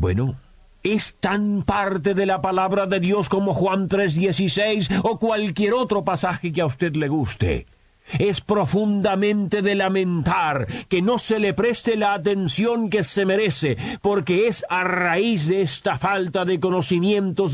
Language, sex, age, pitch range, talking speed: Spanish, male, 50-69, 175-200 Hz, 150 wpm